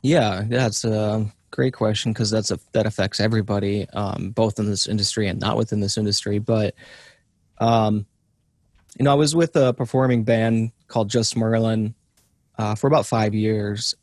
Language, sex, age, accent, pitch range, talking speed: English, male, 20-39, American, 105-115 Hz, 160 wpm